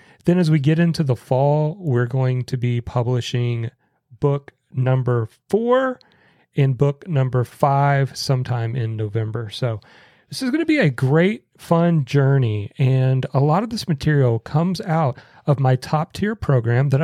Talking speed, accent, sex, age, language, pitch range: 160 wpm, American, male, 40-59, English, 130-160 Hz